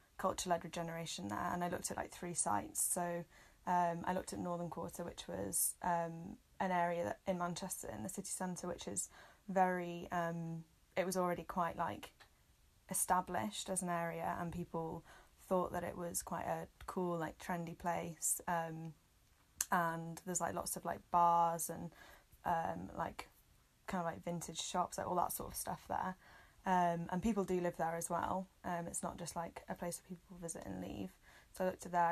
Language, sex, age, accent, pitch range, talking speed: English, female, 10-29, British, 170-180 Hz, 190 wpm